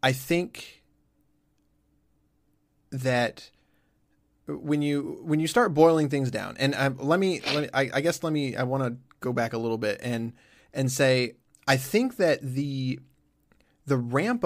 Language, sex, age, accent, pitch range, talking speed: English, male, 20-39, American, 130-165 Hz, 160 wpm